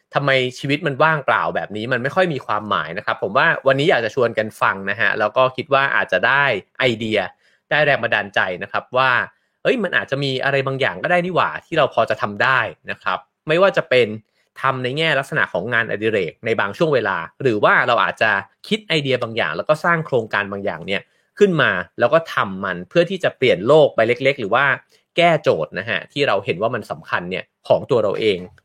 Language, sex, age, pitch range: English, male, 30-49, 110-150 Hz